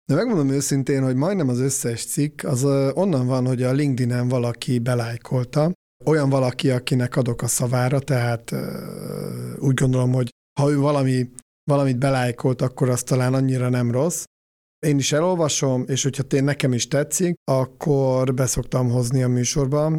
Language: Hungarian